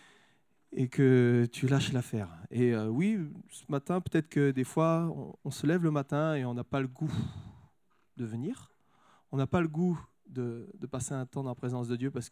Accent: French